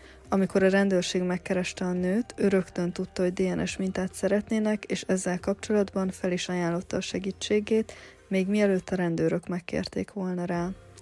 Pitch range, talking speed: 180-200 Hz, 145 wpm